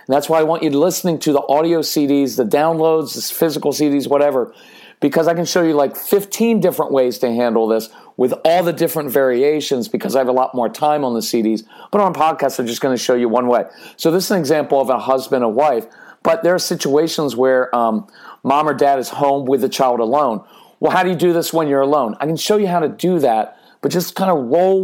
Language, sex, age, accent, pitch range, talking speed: English, male, 40-59, American, 140-185 Hz, 245 wpm